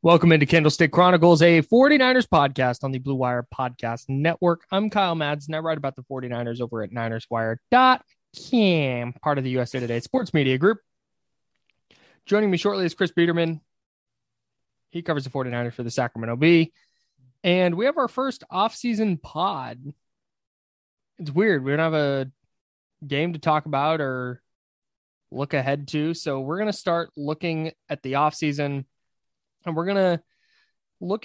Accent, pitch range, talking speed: American, 130-170 Hz, 155 wpm